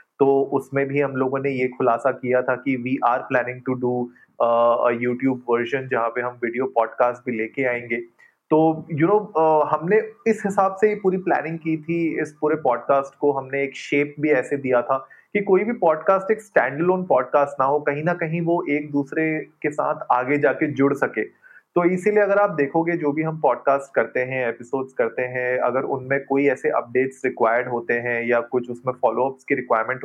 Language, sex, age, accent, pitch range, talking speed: Hindi, male, 30-49, native, 125-155 Hz, 200 wpm